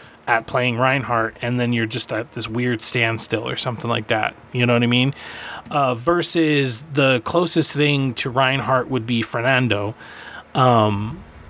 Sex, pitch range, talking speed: male, 125-150 Hz, 160 wpm